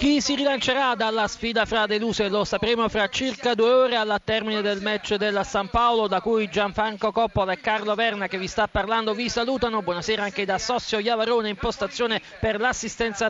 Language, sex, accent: Italian, male, native